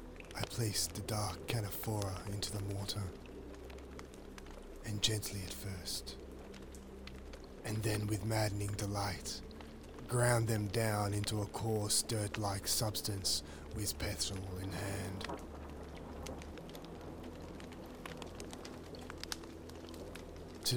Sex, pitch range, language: male, 80-105 Hz, English